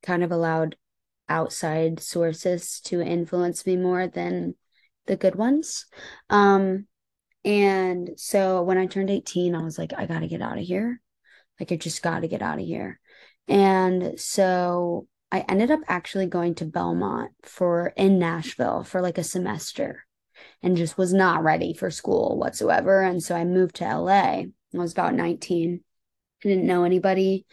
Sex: female